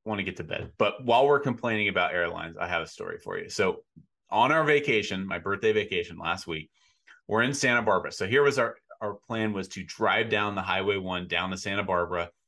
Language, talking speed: English, 225 wpm